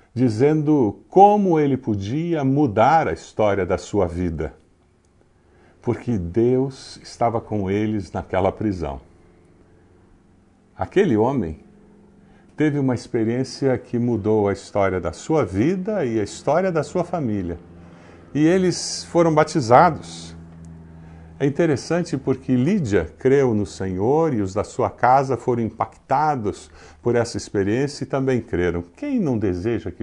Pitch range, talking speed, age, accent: 95-130 Hz, 125 wpm, 50-69, Brazilian